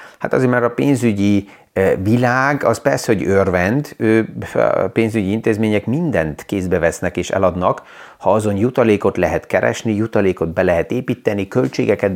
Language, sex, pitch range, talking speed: Hungarian, male, 95-115 Hz, 140 wpm